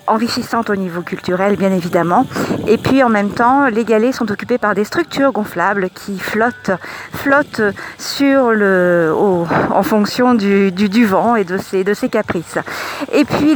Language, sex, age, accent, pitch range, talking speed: French, female, 50-69, French, 195-240 Hz, 175 wpm